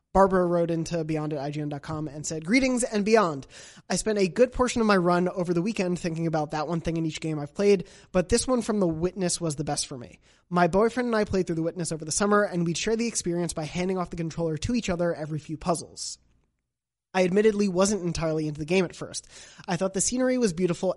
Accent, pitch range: American, 155-190 Hz